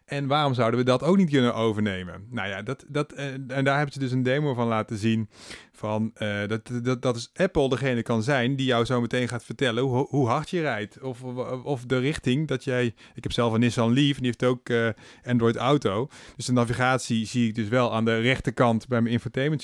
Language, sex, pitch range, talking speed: Dutch, male, 115-140 Hz, 235 wpm